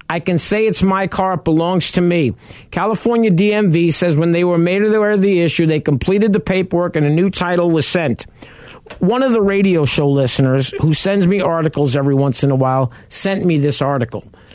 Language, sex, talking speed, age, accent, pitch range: English, male, 205 wpm, 50-69, American, 130-180 Hz